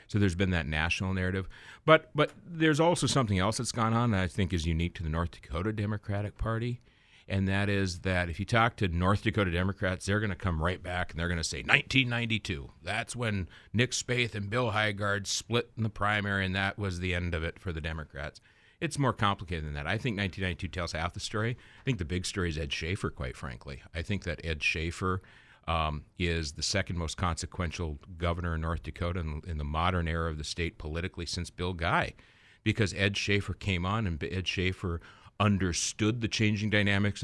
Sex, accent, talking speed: male, American, 215 wpm